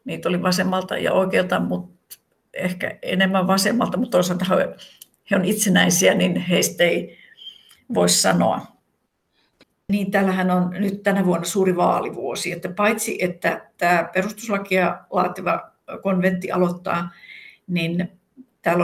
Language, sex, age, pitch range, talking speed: Finnish, female, 60-79, 180-210 Hz, 120 wpm